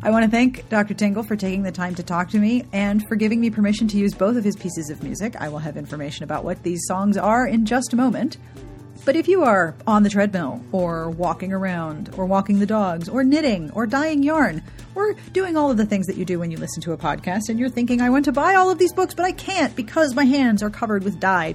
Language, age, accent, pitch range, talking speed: English, 40-59, American, 180-255 Hz, 265 wpm